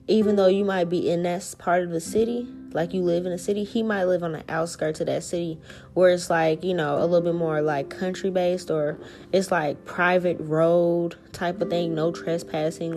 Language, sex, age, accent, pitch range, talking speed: English, female, 20-39, American, 160-185 Hz, 220 wpm